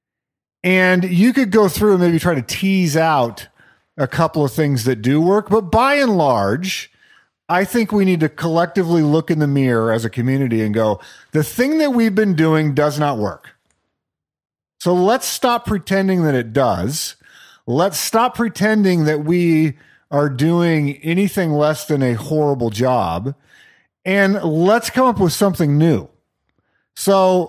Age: 40-59